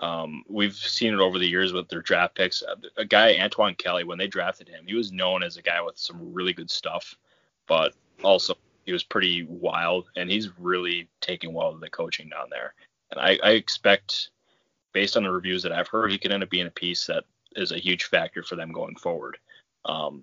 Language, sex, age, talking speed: English, male, 20-39, 220 wpm